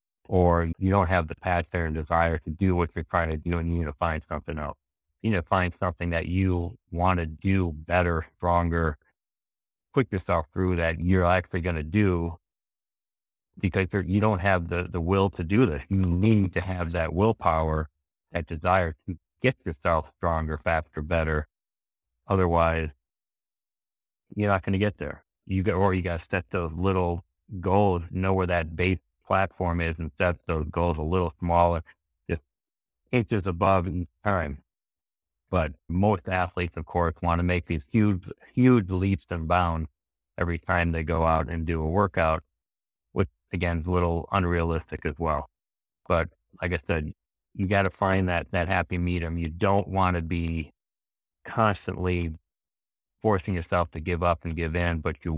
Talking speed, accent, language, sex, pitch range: 175 wpm, American, English, male, 80-95 Hz